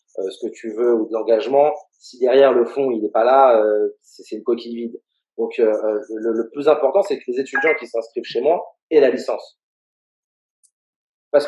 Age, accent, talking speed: 30-49, French, 210 wpm